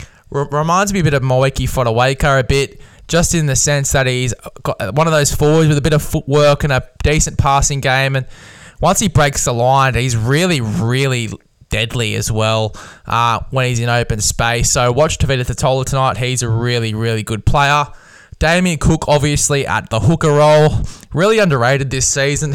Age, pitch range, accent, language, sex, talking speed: 10-29, 120-150 Hz, Australian, English, male, 190 wpm